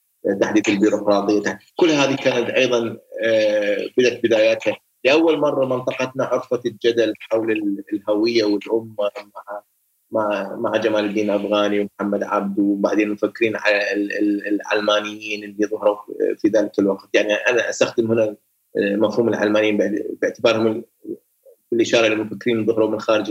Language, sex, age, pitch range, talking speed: Arabic, male, 20-39, 105-135 Hz, 115 wpm